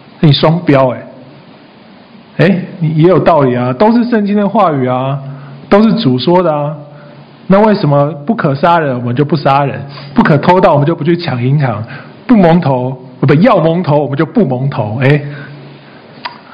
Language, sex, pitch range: Chinese, male, 135-185 Hz